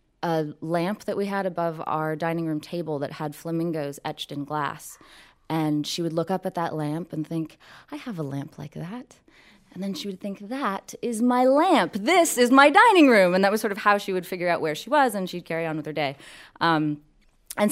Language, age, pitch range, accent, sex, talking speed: English, 20-39, 150-200 Hz, American, female, 230 wpm